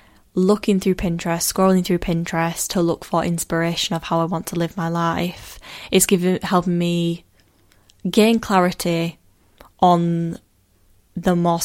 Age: 10-29